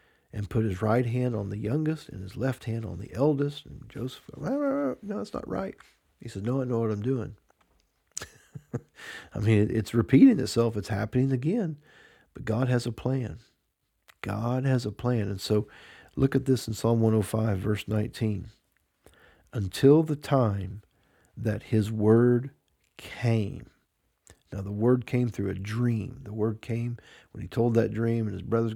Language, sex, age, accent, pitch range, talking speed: English, male, 50-69, American, 105-130 Hz, 170 wpm